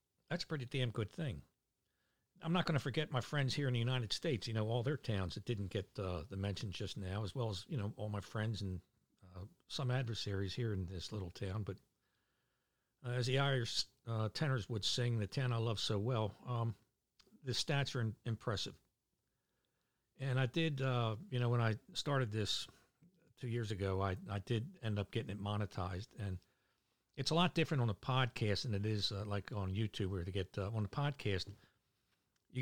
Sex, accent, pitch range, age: male, American, 100-125 Hz, 60-79